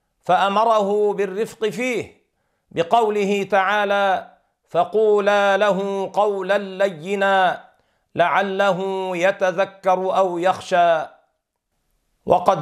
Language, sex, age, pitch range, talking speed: Arabic, male, 50-69, 160-195 Hz, 65 wpm